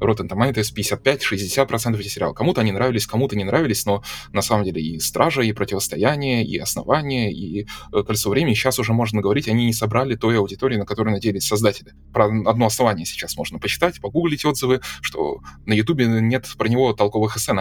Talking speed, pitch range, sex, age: 185 wpm, 100-125 Hz, male, 20-39